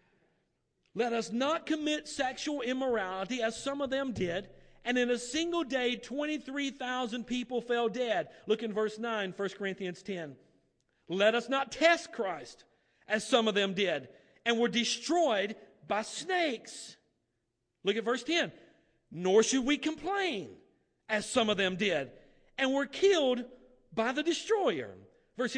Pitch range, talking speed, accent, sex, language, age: 195-275 Hz, 145 wpm, American, male, English, 50-69